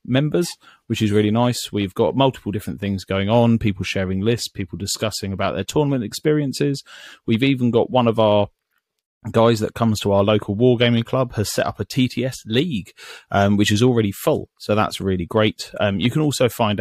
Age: 30-49